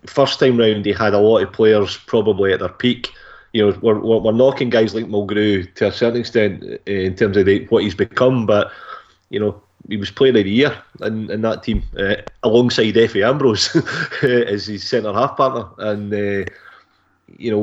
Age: 20-39